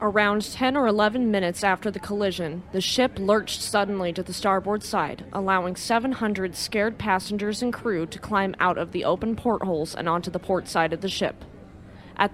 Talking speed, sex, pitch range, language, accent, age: 185 wpm, female, 175-215 Hz, English, American, 20-39